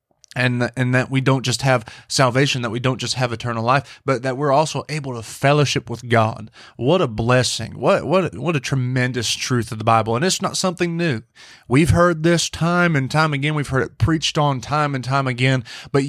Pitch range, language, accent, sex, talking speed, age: 115-140 Hz, English, American, male, 215 wpm, 30-49